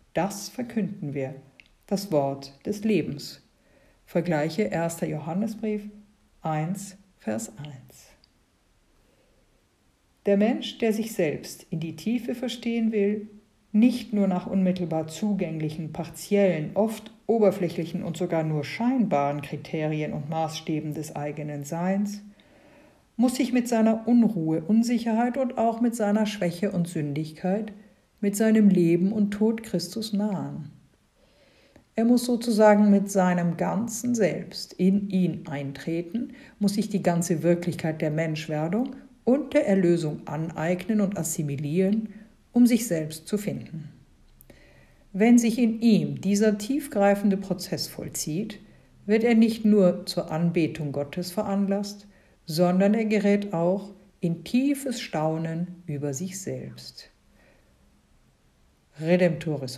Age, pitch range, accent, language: 50-69, 160-215 Hz, German, German